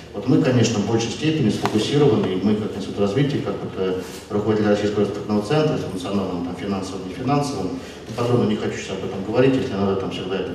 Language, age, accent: Russian, 40-59, native